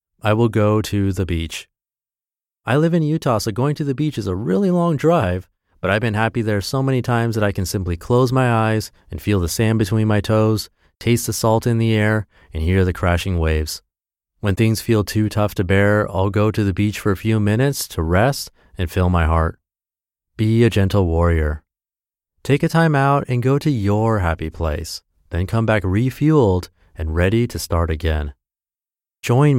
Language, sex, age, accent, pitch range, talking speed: English, male, 30-49, American, 90-115 Hz, 200 wpm